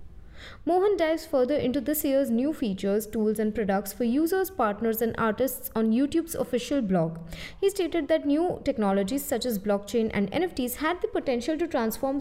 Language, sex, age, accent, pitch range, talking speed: English, female, 20-39, Indian, 220-305 Hz, 170 wpm